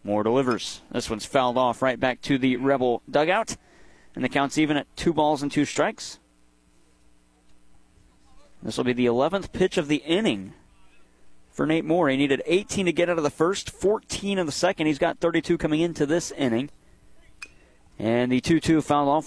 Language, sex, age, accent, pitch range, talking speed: English, male, 30-49, American, 130-185 Hz, 185 wpm